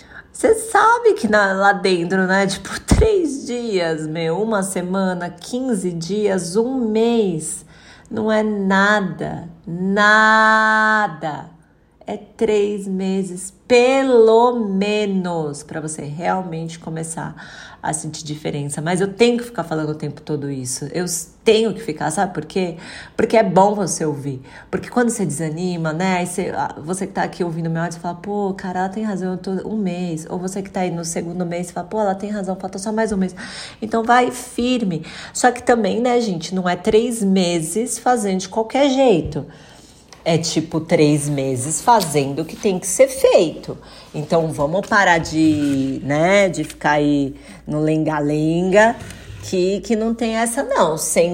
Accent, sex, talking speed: Brazilian, female, 165 wpm